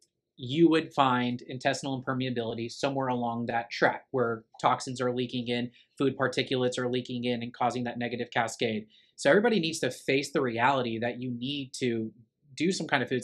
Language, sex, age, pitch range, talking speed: English, male, 20-39, 120-140 Hz, 180 wpm